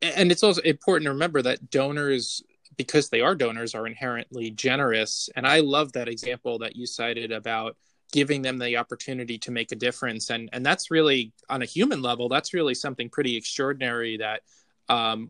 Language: English